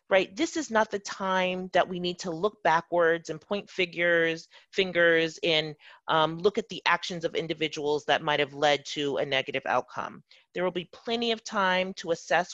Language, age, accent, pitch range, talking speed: English, 30-49, American, 150-185 Hz, 190 wpm